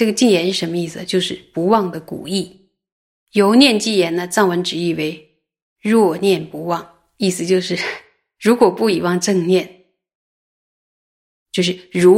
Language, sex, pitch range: Chinese, female, 175-205 Hz